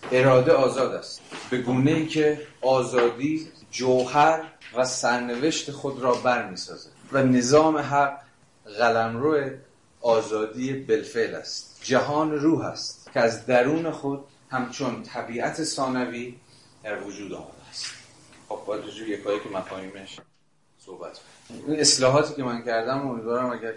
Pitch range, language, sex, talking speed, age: 110-140 Hz, Persian, male, 125 wpm, 30-49